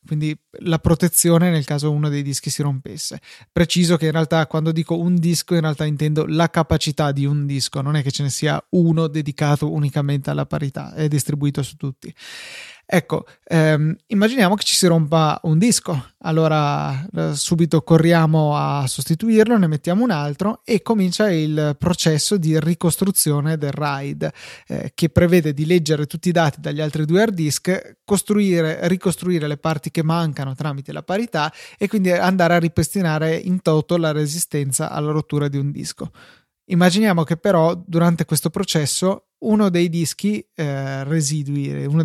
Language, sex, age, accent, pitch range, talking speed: Italian, male, 30-49, native, 150-180 Hz, 165 wpm